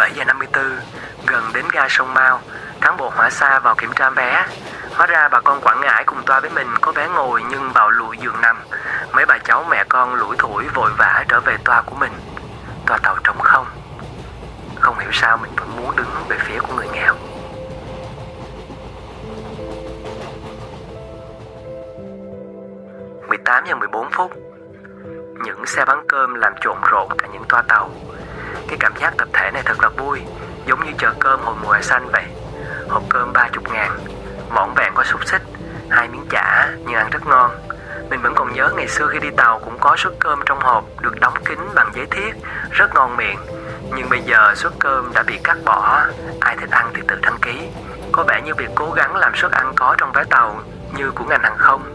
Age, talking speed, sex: 20-39, 190 wpm, male